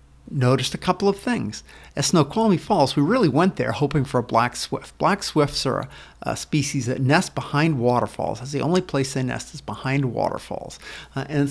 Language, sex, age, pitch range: English, male, 50-69, 130-165 Hz